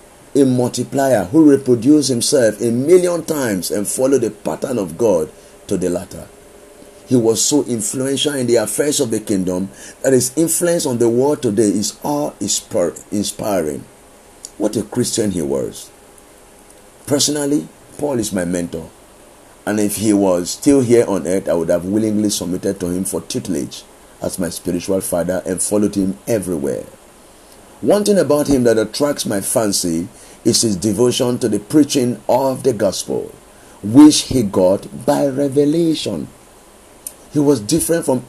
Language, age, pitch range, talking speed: English, 50-69, 100-135 Hz, 155 wpm